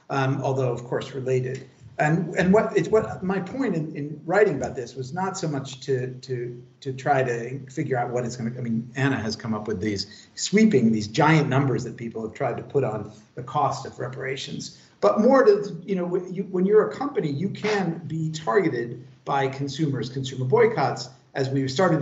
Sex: male